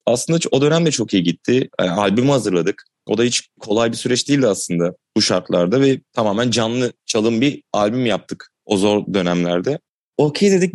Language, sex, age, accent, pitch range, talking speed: Turkish, male, 30-49, native, 105-125 Hz, 180 wpm